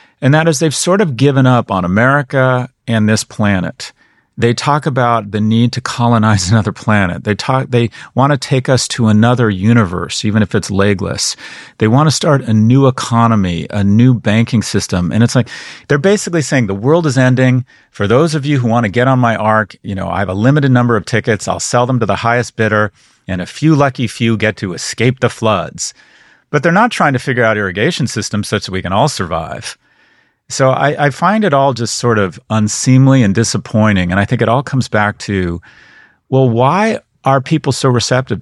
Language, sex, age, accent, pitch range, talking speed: English, male, 40-59, American, 100-130 Hz, 210 wpm